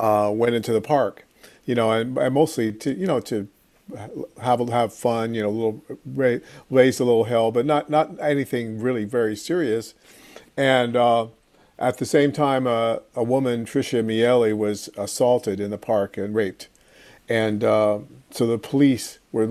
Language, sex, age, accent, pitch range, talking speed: English, male, 50-69, American, 110-125 Hz, 170 wpm